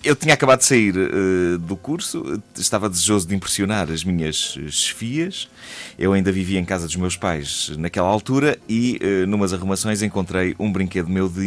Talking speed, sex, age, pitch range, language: 170 wpm, male, 30-49, 90-115 Hz, Portuguese